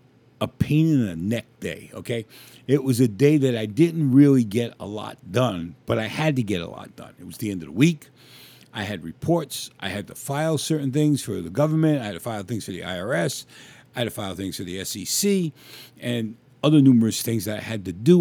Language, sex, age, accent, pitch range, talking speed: English, male, 50-69, American, 110-145 Hz, 235 wpm